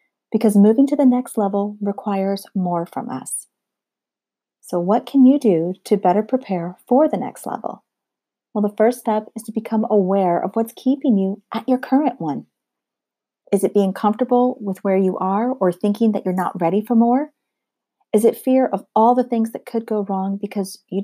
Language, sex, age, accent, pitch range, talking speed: English, female, 40-59, American, 195-245 Hz, 190 wpm